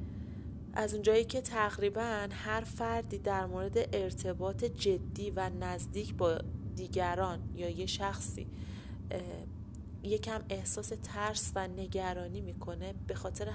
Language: Persian